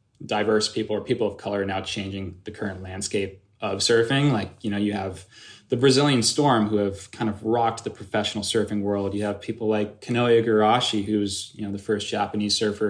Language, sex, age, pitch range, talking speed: English, male, 20-39, 105-115 Hz, 205 wpm